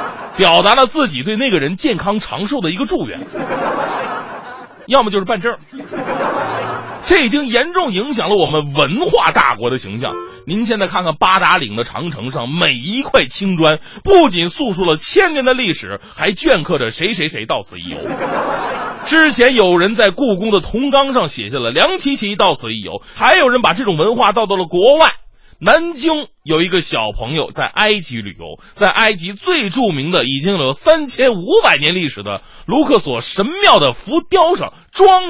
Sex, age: male, 30-49